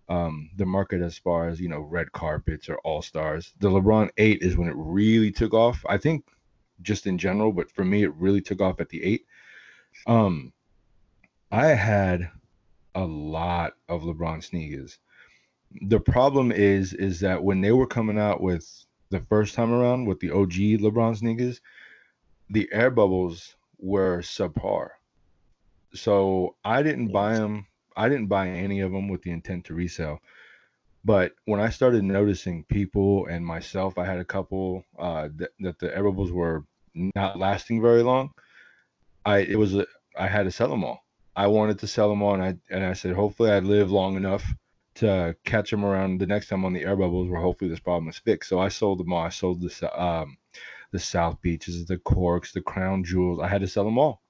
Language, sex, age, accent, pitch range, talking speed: English, male, 30-49, American, 90-105 Hz, 190 wpm